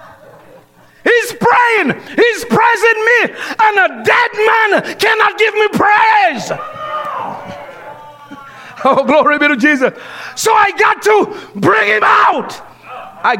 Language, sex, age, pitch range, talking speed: English, male, 50-69, 230-355 Hz, 115 wpm